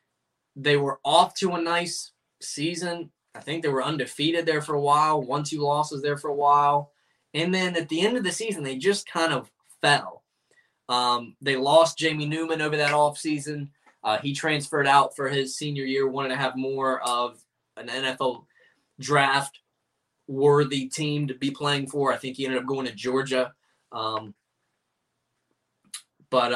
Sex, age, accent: male, 10-29, American